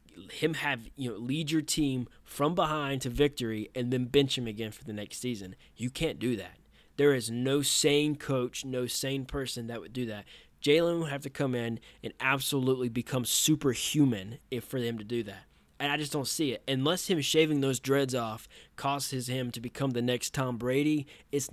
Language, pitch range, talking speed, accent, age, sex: English, 120-145 Hz, 205 wpm, American, 20-39, male